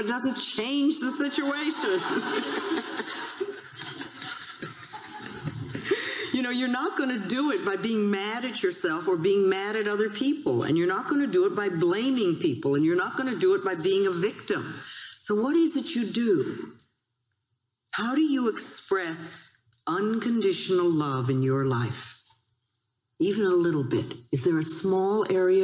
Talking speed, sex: 160 wpm, female